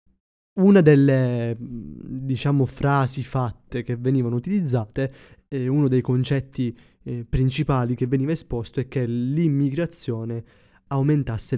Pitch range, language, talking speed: 115-135 Hz, Italian, 110 wpm